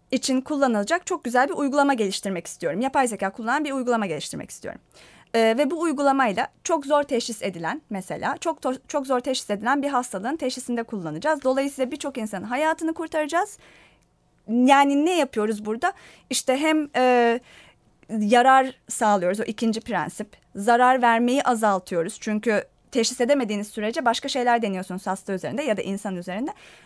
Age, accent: 30-49, native